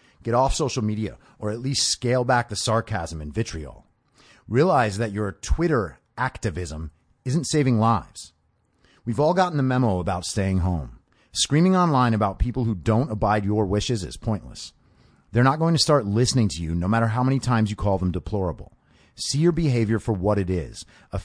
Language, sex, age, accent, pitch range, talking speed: English, male, 30-49, American, 95-130 Hz, 185 wpm